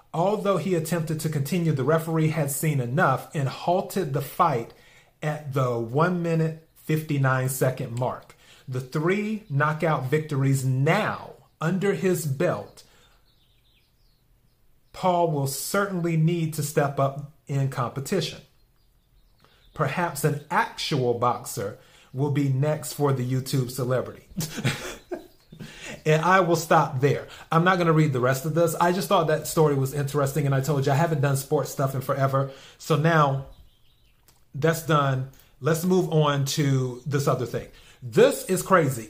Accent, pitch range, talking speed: American, 135-165 Hz, 145 wpm